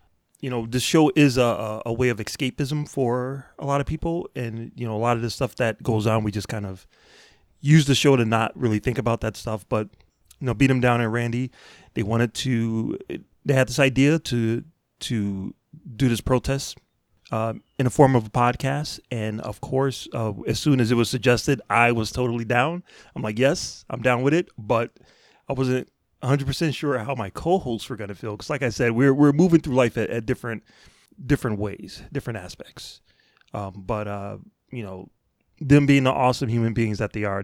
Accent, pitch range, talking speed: American, 110-135 Hz, 210 wpm